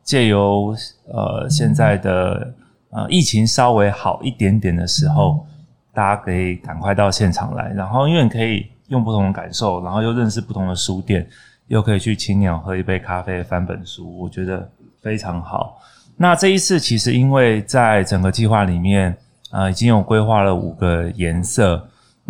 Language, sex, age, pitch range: Chinese, male, 20-39, 95-120 Hz